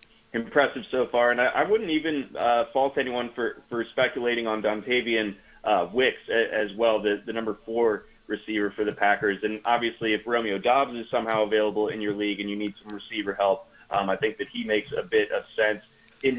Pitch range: 115-135 Hz